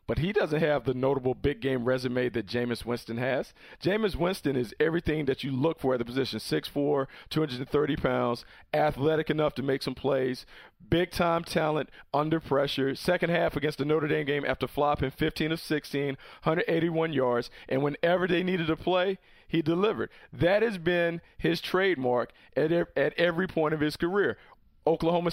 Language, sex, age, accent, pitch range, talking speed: English, male, 40-59, American, 135-175 Hz, 170 wpm